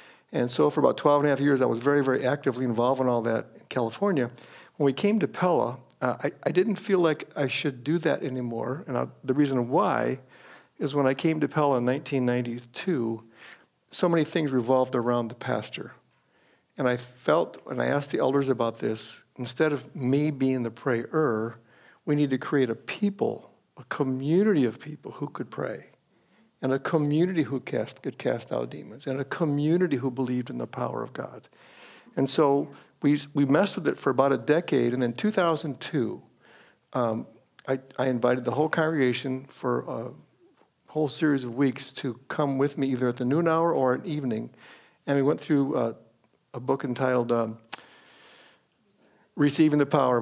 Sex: male